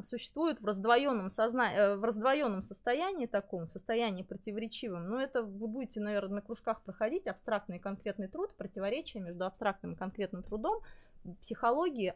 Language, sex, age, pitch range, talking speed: Russian, female, 20-39, 200-260 Hz, 135 wpm